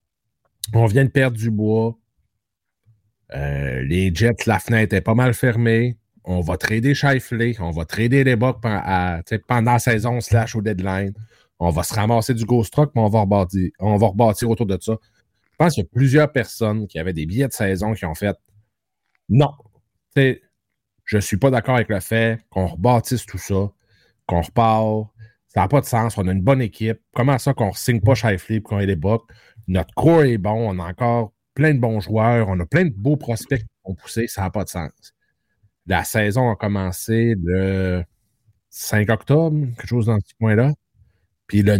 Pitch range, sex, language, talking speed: 95-120 Hz, male, French, 200 wpm